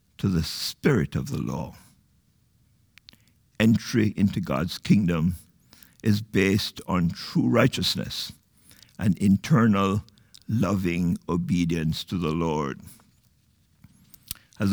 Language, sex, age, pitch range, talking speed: English, male, 60-79, 100-135 Hz, 95 wpm